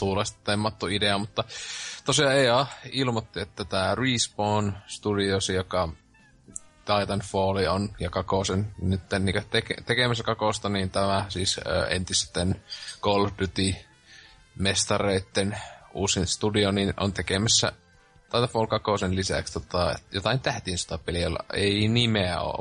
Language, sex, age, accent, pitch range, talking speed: Finnish, male, 20-39, native, 95-105 Hz, 110 wpm